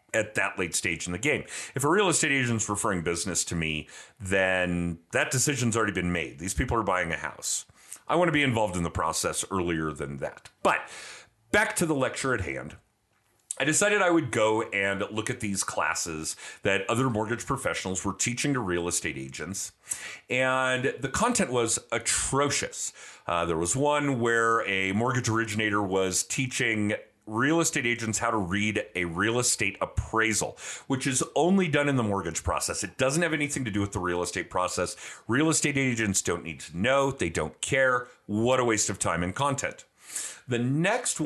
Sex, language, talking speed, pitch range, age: male, English, 190 wpm, 100-135 Hz, 40-59